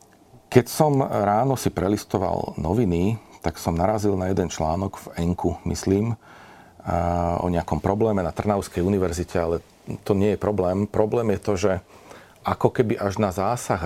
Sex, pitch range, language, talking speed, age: male, 85-100 Hz, Slovak, 150 wpm, 40-59